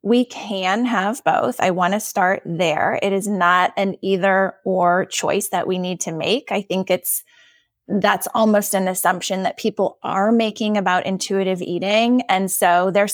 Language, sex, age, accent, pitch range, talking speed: English, female, 20-39, American, 180-230 Hz, 175 wpm